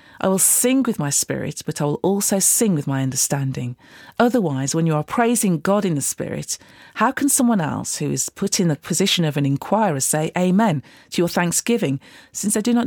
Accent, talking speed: British, 210 wpm